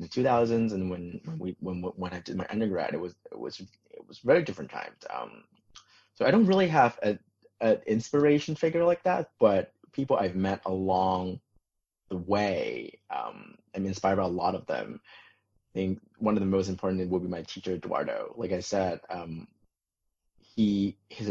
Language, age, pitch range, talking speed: English, 30-49, 90-110 Hz, 185 wpm